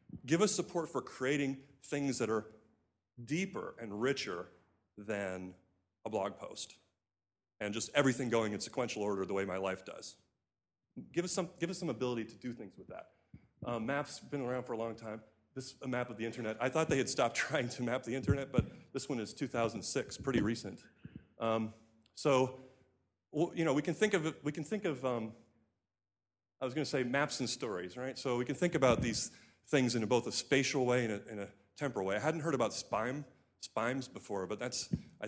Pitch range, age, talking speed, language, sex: 105-130 Hz, 30-49, 210 wpm, English, male